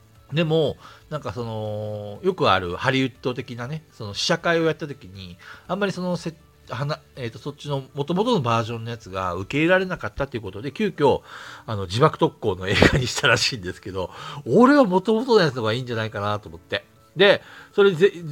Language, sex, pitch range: Japanese, male, 100-150 Hz